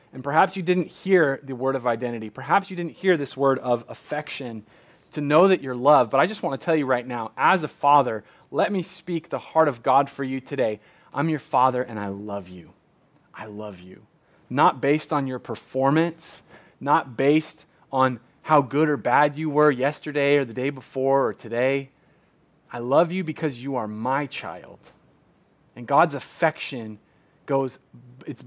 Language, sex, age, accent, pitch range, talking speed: English, male, 30-49, American, 125-155 Hz, 185 wpm